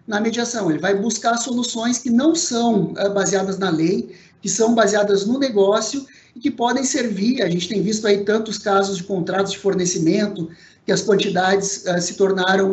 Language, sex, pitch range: Portuguese, male, 190-225 Hz